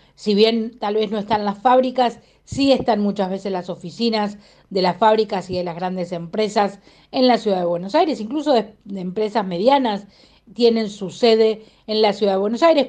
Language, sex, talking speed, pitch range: Spanish, female, 195 wpm, 195-265 Hz